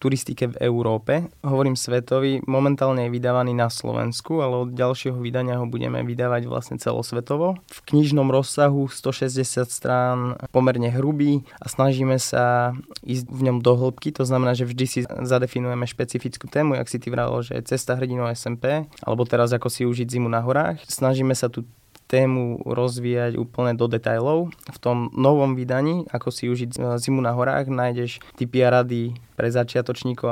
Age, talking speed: 20-39, 160 wpm